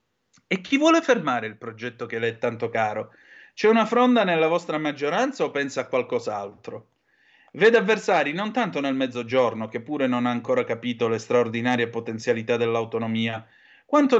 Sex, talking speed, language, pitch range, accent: male, 160 wpm, Italian, 120-170 Hz, native